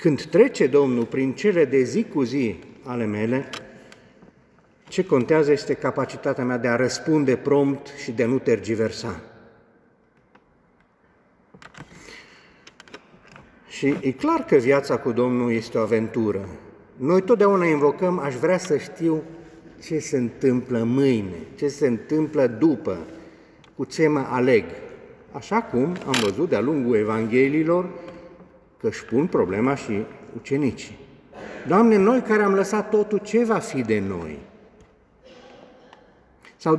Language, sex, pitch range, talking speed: Romanian, male, 125-205 Hz, 130 wpm